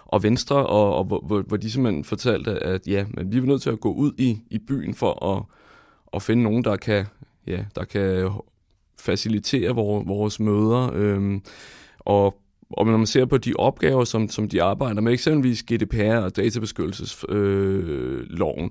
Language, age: English, 30-49